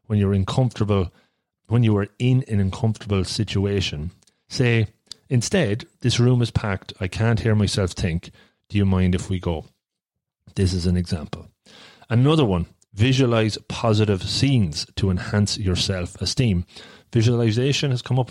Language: English